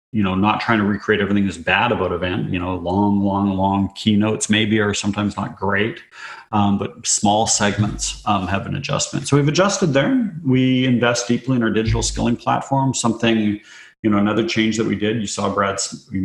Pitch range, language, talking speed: 100-115 Hz, English, 200 wpm